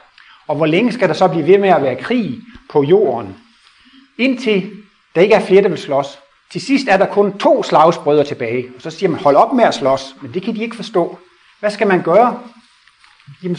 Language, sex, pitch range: Danish, male, 135-200 Hz